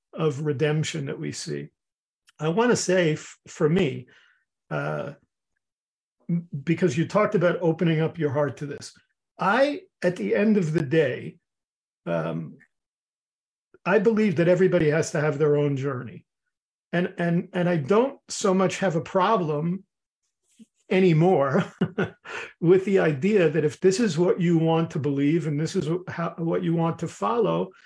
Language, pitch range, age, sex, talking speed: English, 155-190 Hz, 50-69, male, 155 wpm